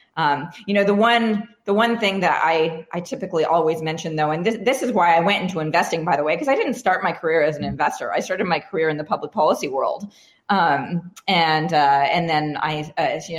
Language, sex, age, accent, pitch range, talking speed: English, female, 30-49, American, 165-225 Hz, 240 wpm